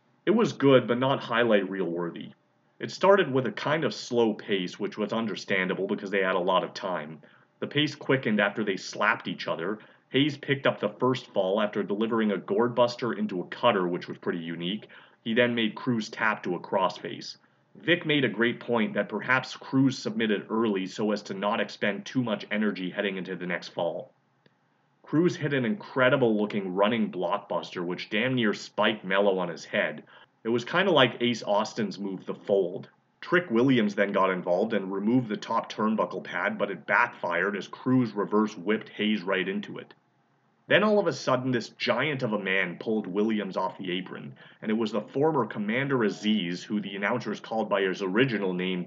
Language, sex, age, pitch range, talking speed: English, male, 30-49, 100-130 Hz, 195 wpm